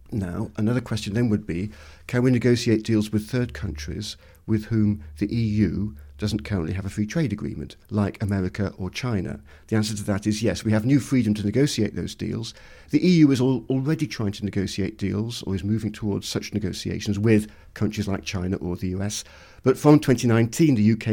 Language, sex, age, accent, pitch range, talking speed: English, male, 50-69, British, 100-115 Hz, 195 wpm